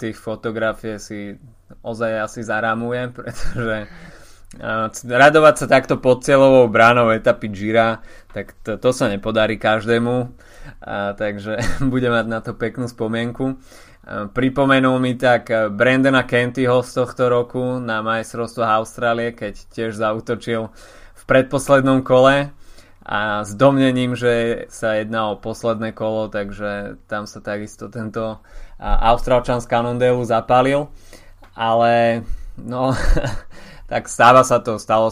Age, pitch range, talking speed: 20-39, 110-125 Hz, 125 wpm